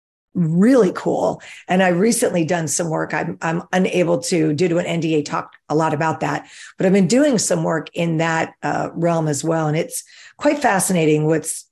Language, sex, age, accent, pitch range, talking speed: English, female, 50-69, American, 150-180 Hz, 195 wpm